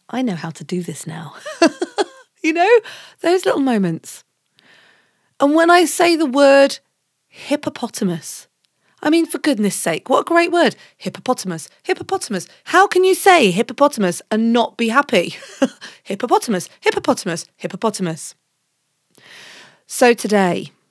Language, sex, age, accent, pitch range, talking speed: English, female, 30-49, British, 185-280 Hz, 125 wpm